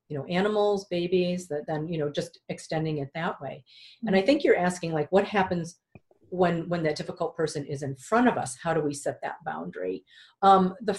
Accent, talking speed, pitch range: American, 215 wpm, 165-210 Hz